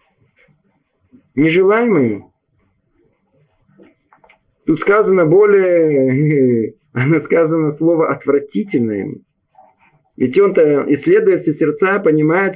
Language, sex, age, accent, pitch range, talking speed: Russian, male, 20-39, native, 150-235 Hz, 65 wpm